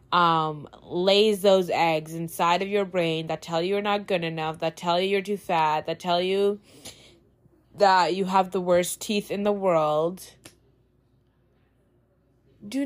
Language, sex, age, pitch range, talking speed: English, female, 20-39, 160-195 Hz, 160 wpm